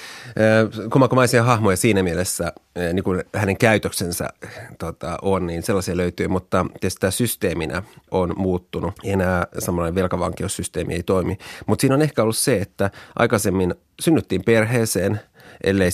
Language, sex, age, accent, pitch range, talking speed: Finnish, male, 30-49, native, 90-110 Hz, 130 wpm